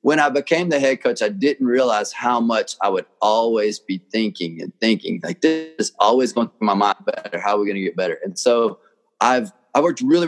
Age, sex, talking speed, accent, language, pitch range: 30-49, male, 235 wpm, American, English, 115-175 Hz